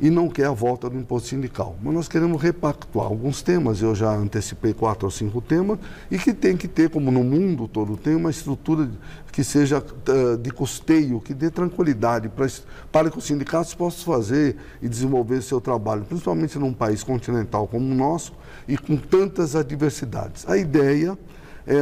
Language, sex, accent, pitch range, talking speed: English, male, Brazilian, 120-165 Hz, 180 wpm